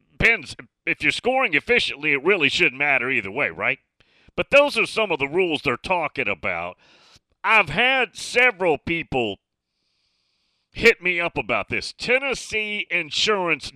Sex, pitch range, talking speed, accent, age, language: male, 125-205 Hz, 140 wpm, American, 40-59, English